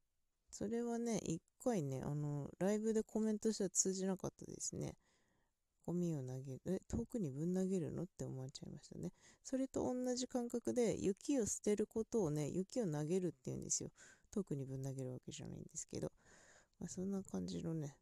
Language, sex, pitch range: Japanese, female, 150-220 Hz